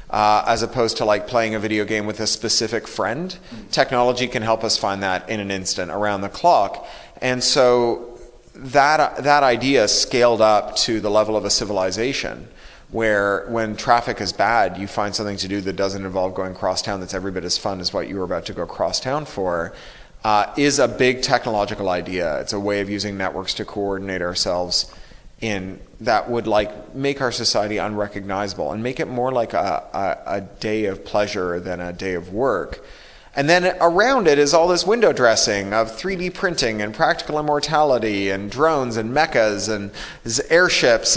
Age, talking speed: 30-49, 190 wpm